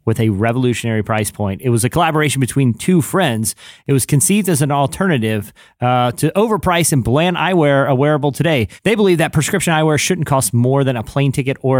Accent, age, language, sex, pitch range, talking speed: American, 30-49, English, male, 120-160 Hz, 205 wpm